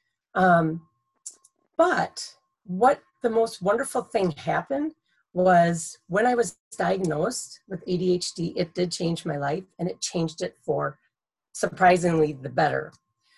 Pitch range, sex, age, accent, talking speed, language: 165-195 Hz, female, 30-49, American, 125 wpm, English